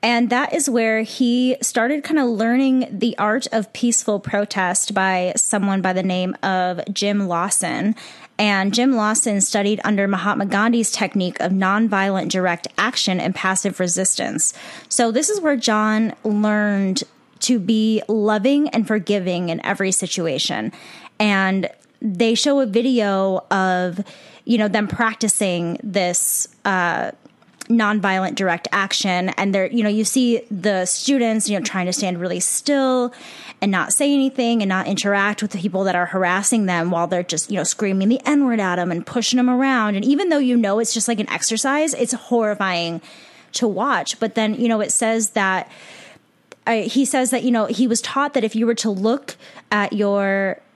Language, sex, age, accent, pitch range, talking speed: English, female, 10-29, American, 190-235 Hz, 175 wpm